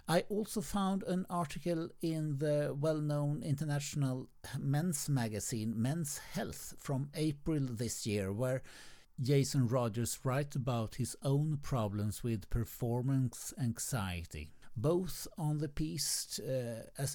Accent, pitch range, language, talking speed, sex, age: native, 125-150 Hz, Swedish, 115 wpm, male, 50-69